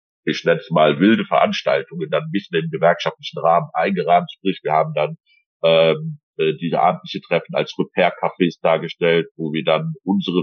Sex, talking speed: male, 160 wpm